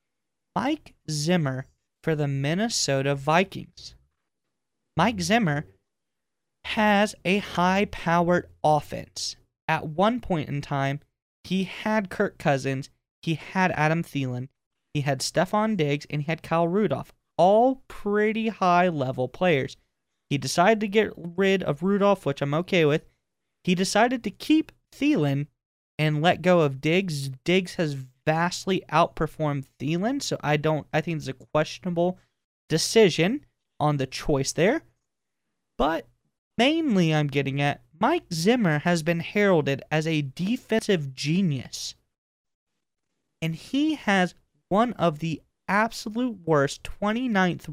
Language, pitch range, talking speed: English, 145-195 Hz, 125 wpm